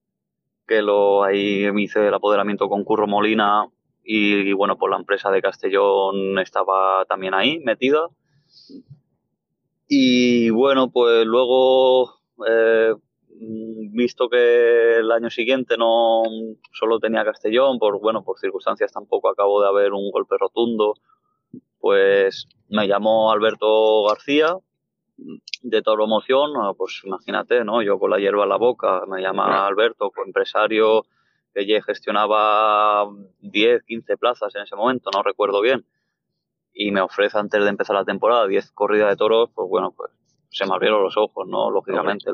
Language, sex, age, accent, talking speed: Spanish, male, 20-39, Spanish, 145 wpm